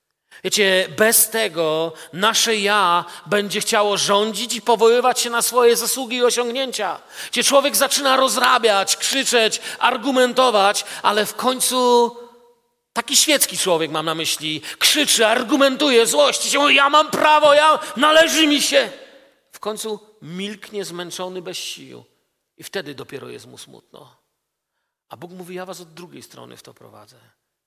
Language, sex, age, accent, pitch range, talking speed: Polish, male, 40-59, native, 180-240 Hz, 140 wpm